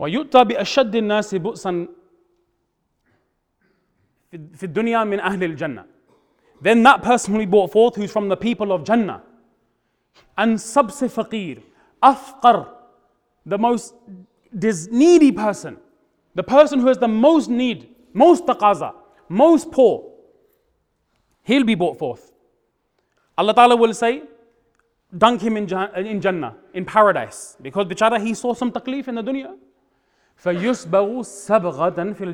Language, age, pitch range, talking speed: English, 30-49, 155-235 Hz, 100 wpm